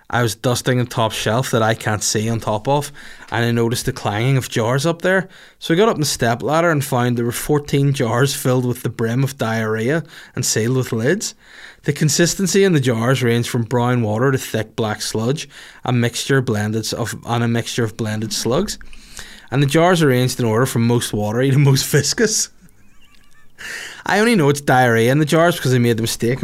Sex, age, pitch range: male, 20-39, 115-140 Hz